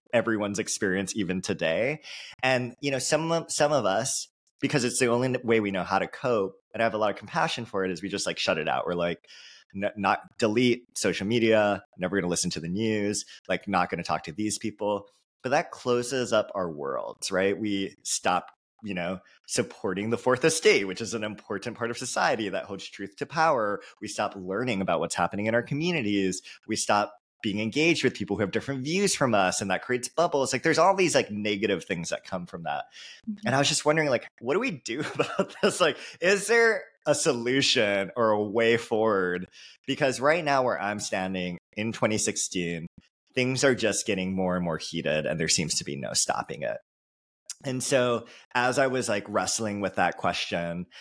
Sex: male